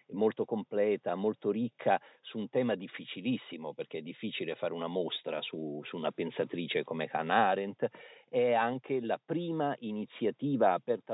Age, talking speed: 50-69, 145 wpm